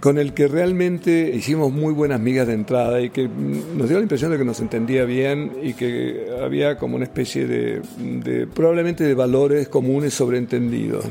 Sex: male